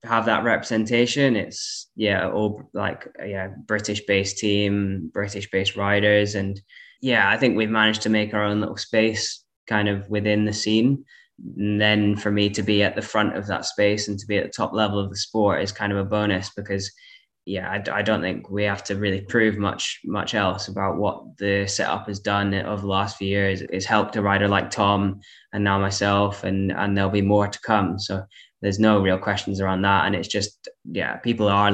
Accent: British